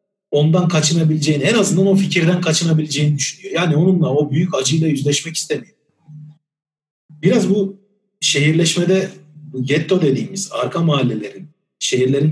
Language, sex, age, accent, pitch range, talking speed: Turkish, male, 40-59, native, 145-180 Hz, 115 wpm